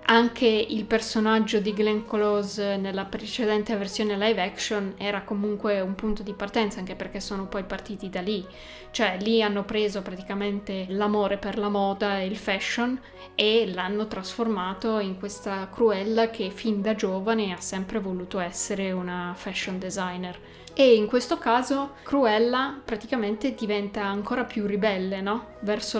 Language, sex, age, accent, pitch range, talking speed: Italian, female, 20-39, native, 195-220 Hz, 150 wpm